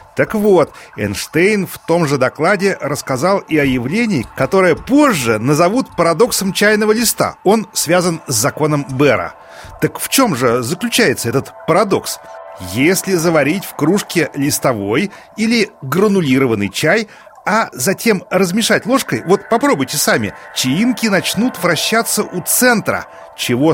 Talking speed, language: 125 wpm, Russian